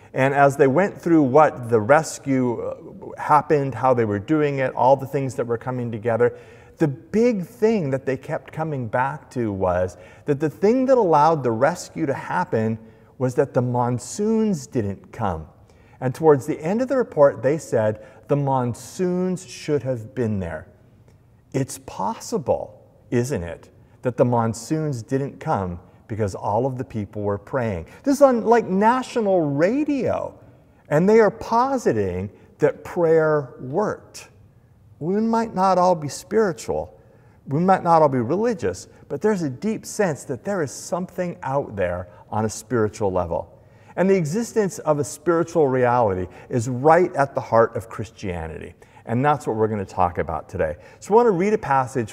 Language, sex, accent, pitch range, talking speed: English, male, American, 115-165 Hz, 170 wpm